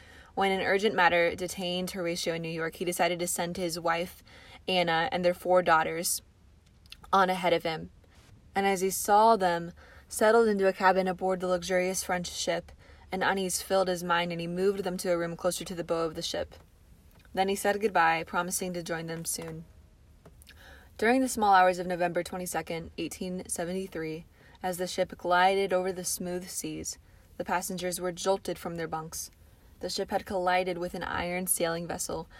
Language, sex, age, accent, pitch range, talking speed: English, female, 20-39, American, 165-185 Hz, 180 wpm